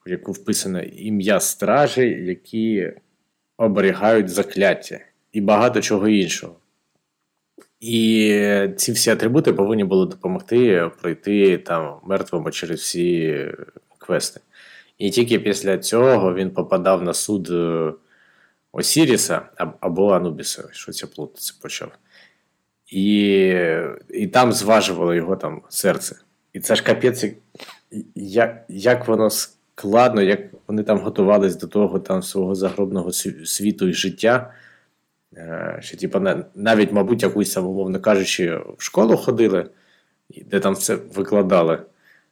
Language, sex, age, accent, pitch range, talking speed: Ukrainian, male, 20-39, native, 95-110 Hz, 115 wpm